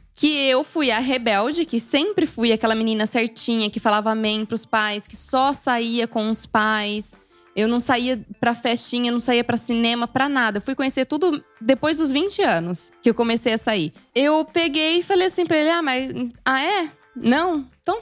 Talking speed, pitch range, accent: 195 wpm, 235-315 Hz, Brazilian